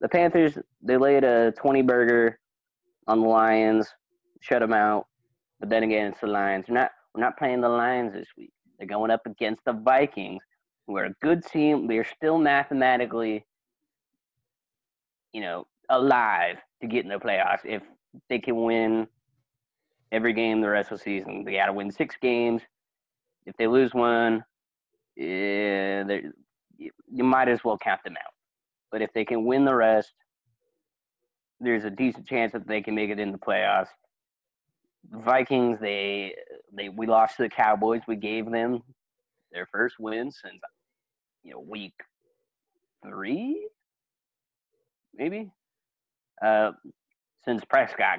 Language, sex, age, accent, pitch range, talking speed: English, male, 20-39, American, 110-140 Hz, 150 wpm